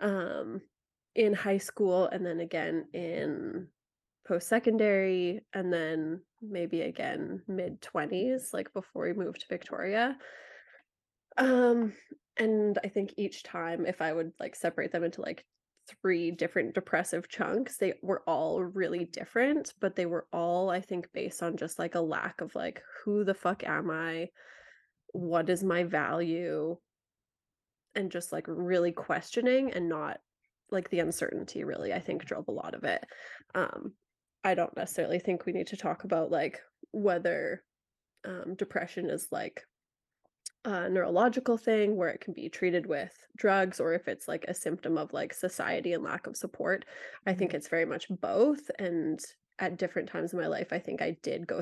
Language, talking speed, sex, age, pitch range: English, 165 wpm, female, 20-39, 170-200 Hz